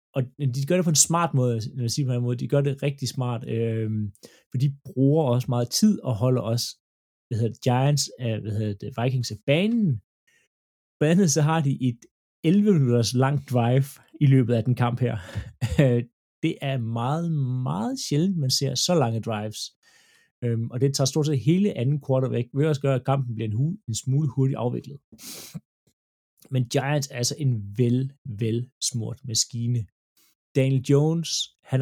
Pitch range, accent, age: 115-140 Hz, native, 30-49